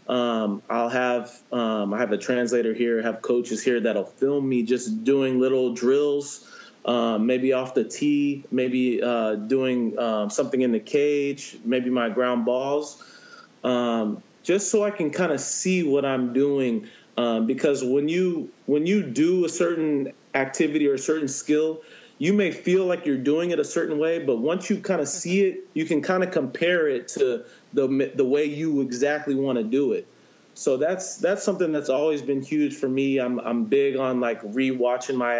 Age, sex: 30-49, male